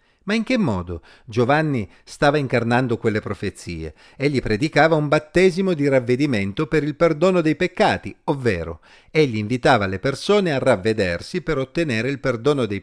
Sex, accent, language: male, native, Italian